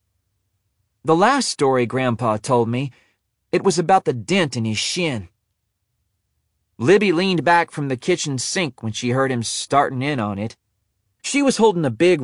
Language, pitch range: English, 105-160 Hz